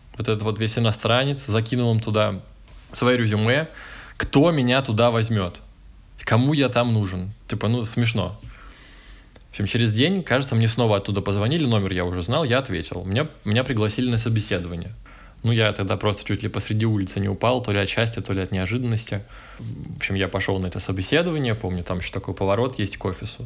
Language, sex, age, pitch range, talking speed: Russian, male, 20-39, 95-120 Hz, 190 wpm